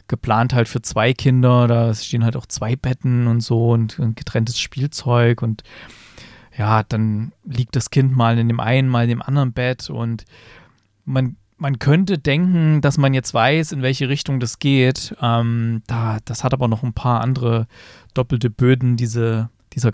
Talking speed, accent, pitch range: 175 wpm, German, 115-140 Hz